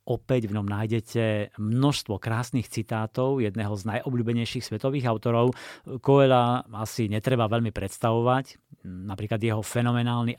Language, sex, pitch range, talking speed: Slovak, male, 105-125 Hz, 115 wpm